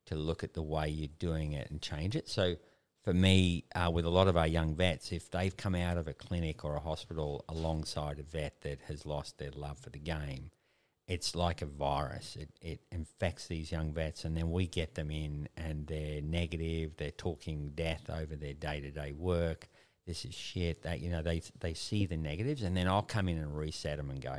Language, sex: English, male